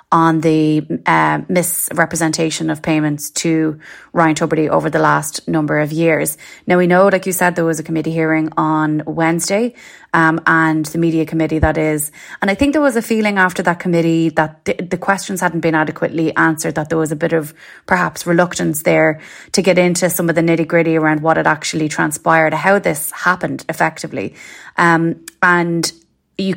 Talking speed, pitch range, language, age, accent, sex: 185 wpm, 160-175 Hz, English, 20-39, Irish, female